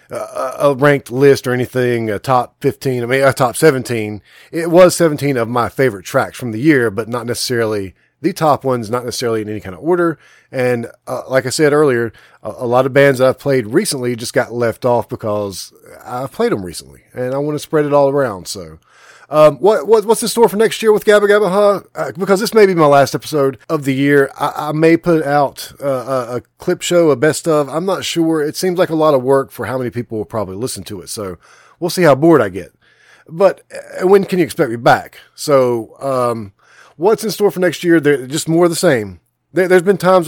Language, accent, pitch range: English, American, 120-160 Hz